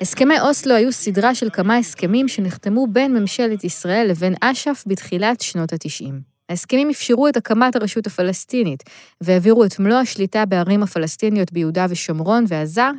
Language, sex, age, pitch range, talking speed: Hebrew, female, 20-39, 175-240 Hz, 145 wpm